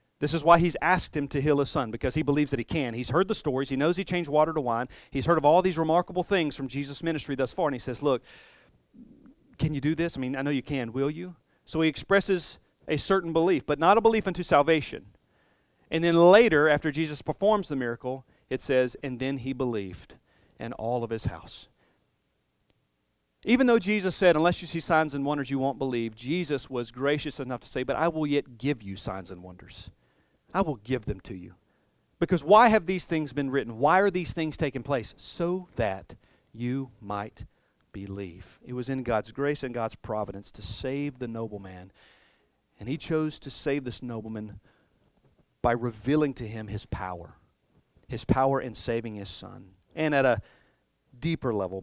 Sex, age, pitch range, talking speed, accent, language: male, 40-59, 110-155 Hz, 200 wpm, American, English